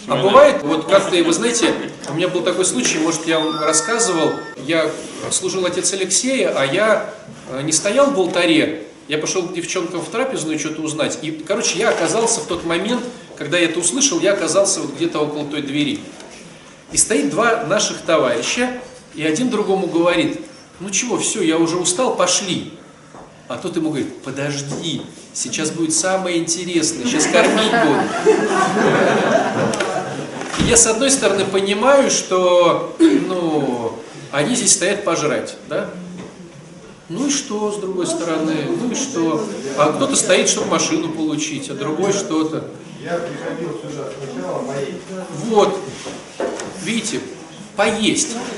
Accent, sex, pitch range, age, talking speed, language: native, male, 165-230 Hz, 30-49, 140 wpm, Russian